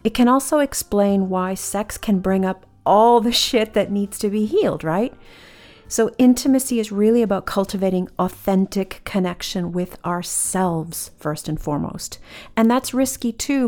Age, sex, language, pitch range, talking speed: 40-59, female, English, 185-245 Hz, 155 wpm